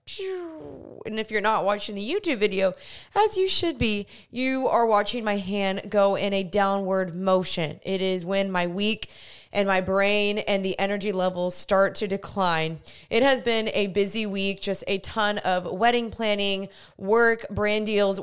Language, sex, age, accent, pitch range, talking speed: English, female, 20-39, American, 195-235 Hz, 170 wpm